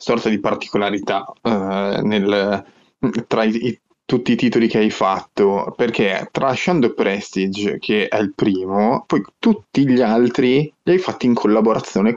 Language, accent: Italian, native